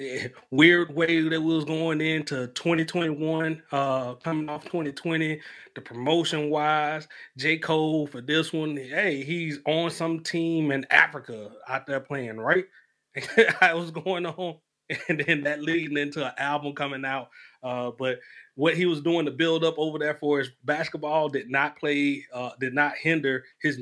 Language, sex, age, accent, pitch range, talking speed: English, male, 30-49, American, 130-160 Hz, 165 wpm